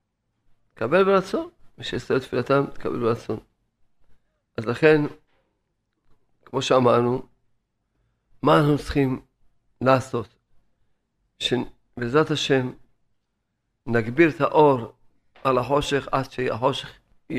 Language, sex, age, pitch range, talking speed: Hebrew, male, 50-69, 115-150 Hz, 85 wpm